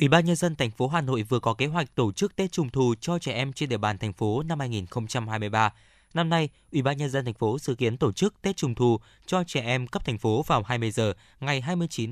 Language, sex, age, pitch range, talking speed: Vietnamese, male, 20-39, 115-155 Hz, 265 wpm